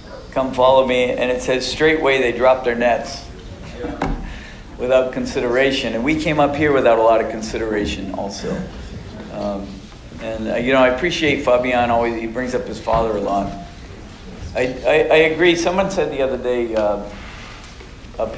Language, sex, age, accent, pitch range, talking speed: English, male, 50-69, American, 110-135 Hz, 165 wpm